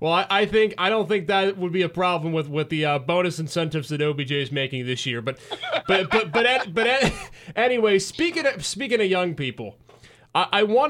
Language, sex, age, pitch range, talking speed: English, male, 30-49, 140-190 Hz, 210 wpm